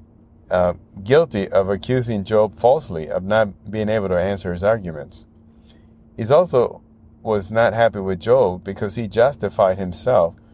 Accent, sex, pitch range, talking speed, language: American, male, 85-110 Hz, 140 wpm, English